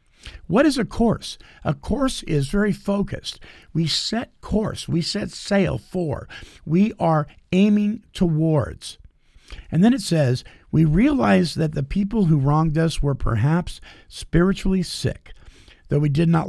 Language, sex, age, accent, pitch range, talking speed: English, male, 50-69, American, 125-185 Hz, 145 wpm